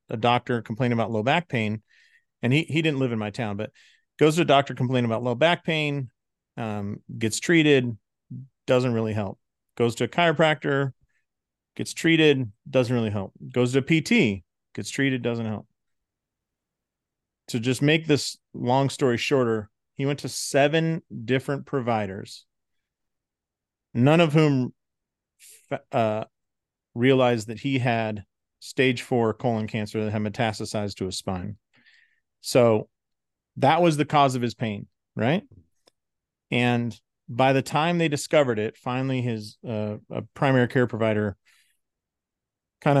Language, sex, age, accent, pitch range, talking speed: English, male, 40-59, American, 110-140 Hz, 145 wpm